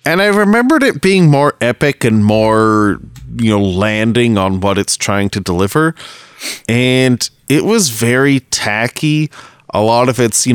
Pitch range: 100-125 Hz